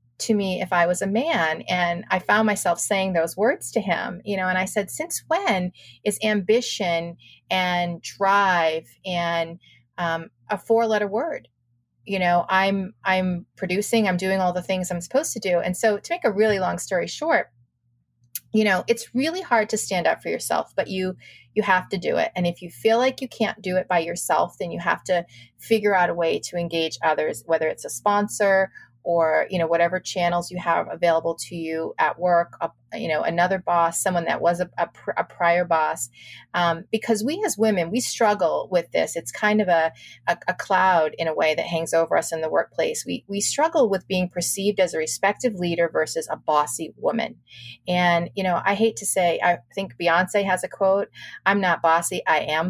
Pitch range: 170-210 Hz